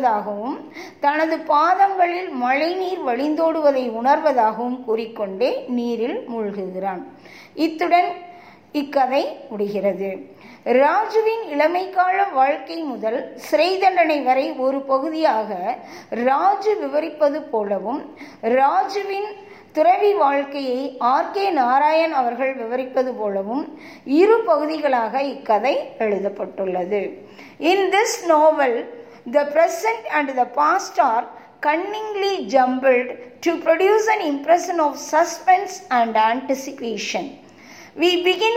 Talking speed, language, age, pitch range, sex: 80 wpm, Tamil, 20-39, 245-345 Hz, female